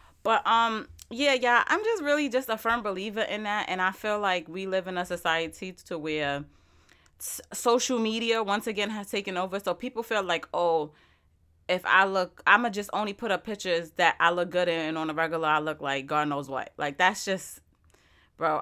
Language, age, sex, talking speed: English, 20-39, female, 215 wpm